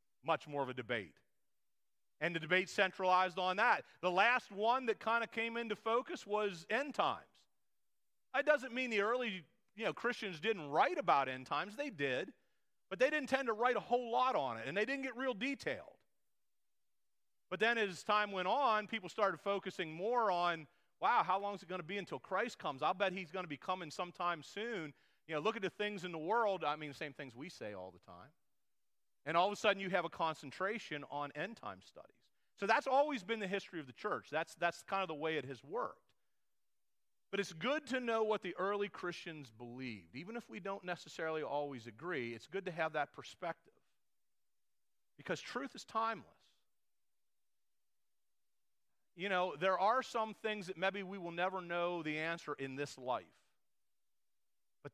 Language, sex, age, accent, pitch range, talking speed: English, male, 40-59, American, 155-215 Hz, 195 wpm